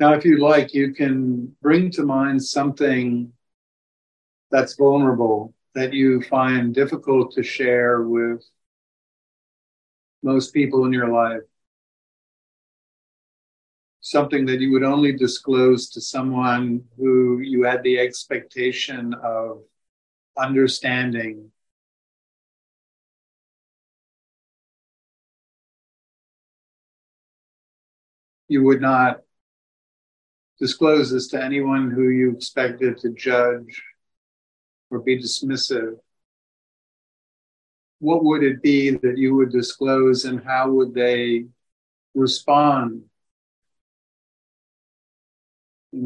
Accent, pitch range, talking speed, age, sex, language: American, 115-135 Hz, 90 wpm, 50-69, male, English